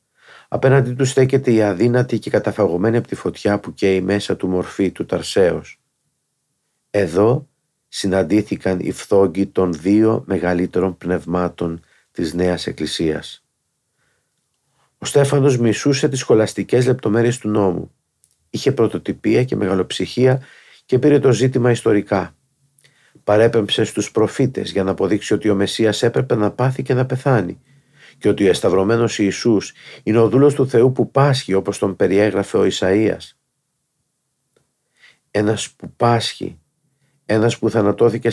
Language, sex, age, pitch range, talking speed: Greek, male, 50-69, 95-130 Hz, 130 wpm